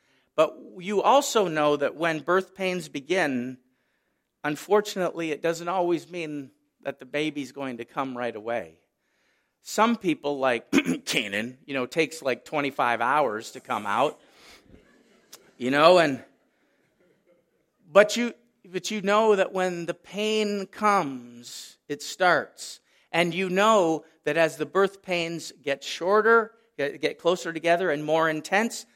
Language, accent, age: English, American, 50-69